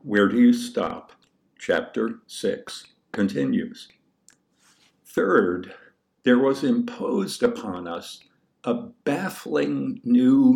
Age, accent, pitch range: 60-79, American, 210-245 Hz